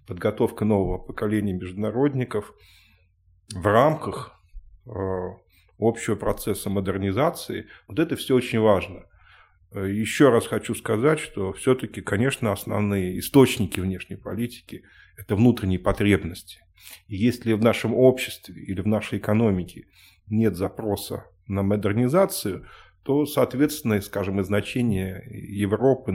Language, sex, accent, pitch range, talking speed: Russian, male, native, 95-115 Hz, 110 wpm